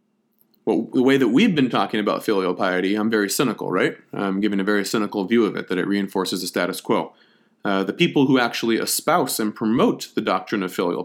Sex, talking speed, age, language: male, 215 wpm, 30-49, English